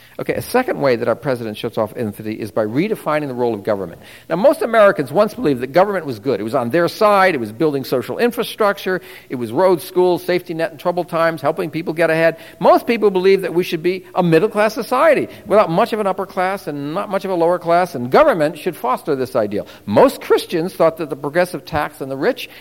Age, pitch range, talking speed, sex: 50-69, 125-185 Hz, 235 wpm, male